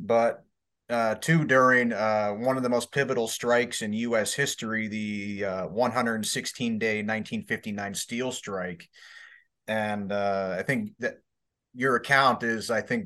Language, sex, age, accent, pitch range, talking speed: English, male, 30-49, American, 105-125 Hz, 140 wpm